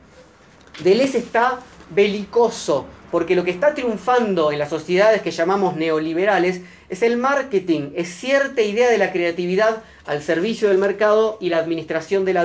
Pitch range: 175-230 Hz